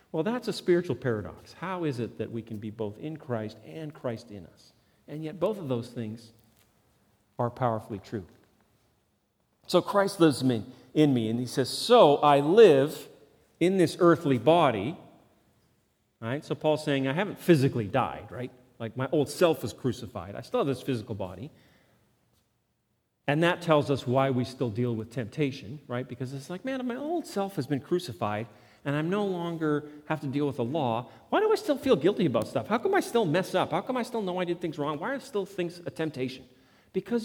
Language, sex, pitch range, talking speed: English, male, 115-175 Hz, 205 wpm